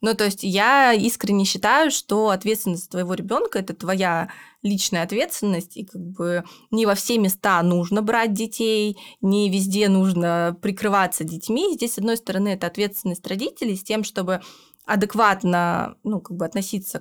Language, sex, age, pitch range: Russian, female, 20-39, 185-225 Hz